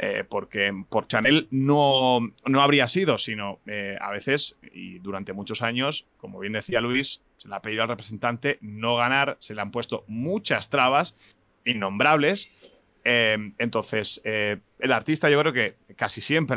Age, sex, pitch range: 30-49, male, 110-145 Hz